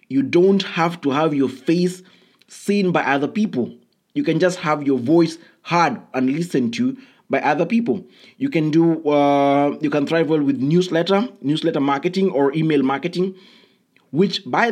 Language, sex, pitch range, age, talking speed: English, male, 130-165 Hz, 20-39, 165 wpm